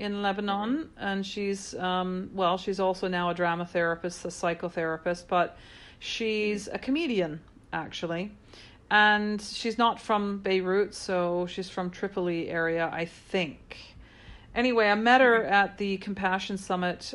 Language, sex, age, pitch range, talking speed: English, female, 40-59, 175-195 Hz, 135 wpm